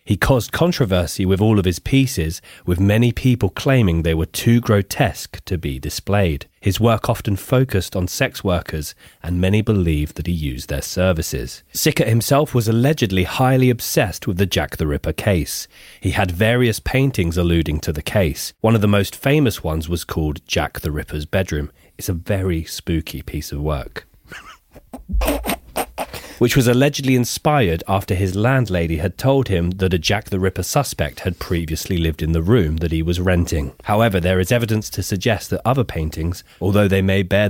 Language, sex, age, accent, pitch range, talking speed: English, male, 30-49, British, 85-115 Hz, 180 wpm